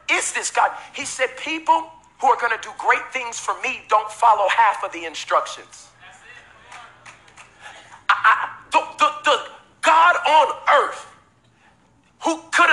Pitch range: 215-295 Hz